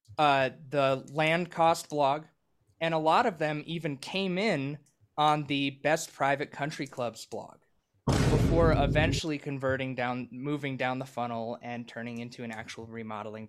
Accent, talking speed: American, 150 wpm